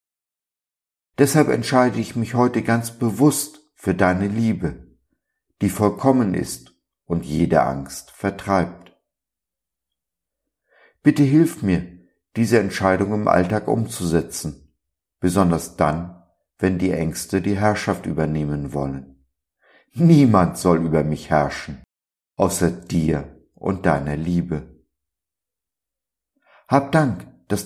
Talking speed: 100 wpm